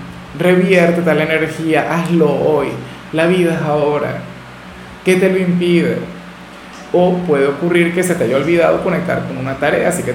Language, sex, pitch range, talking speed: Spanish, male, 135-175 Hz, 160 wpm